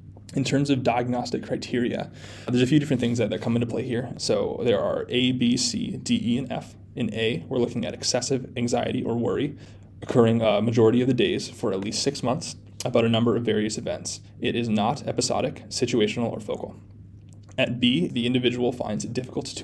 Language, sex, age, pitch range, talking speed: English, male, 20-39, 110-125 Hz, 205 wpm